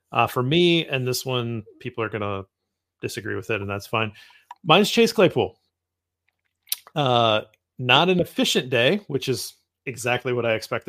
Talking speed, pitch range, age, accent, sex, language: 165 wpm, 110-140 Hz, 30-49, American, male, English